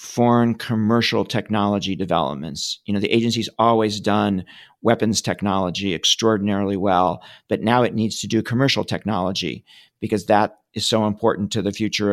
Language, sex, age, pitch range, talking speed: English, male, 50-69, 105-120 Hz, 150 wpm